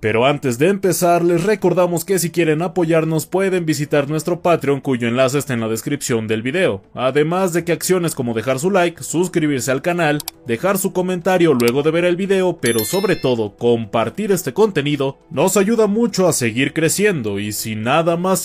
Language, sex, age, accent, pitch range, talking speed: Spanish, male, 30-49, Mexican, 130-180 Hz, 185 wpm